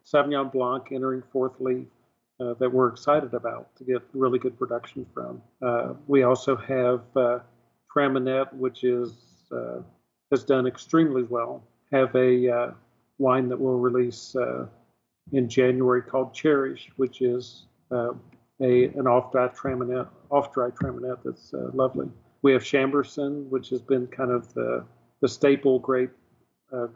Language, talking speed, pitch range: English, 150 wpm, 125-135 Hz